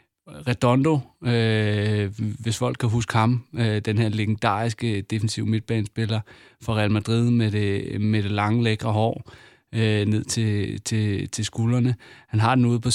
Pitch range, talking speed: 105-125 Hz, 160 wpm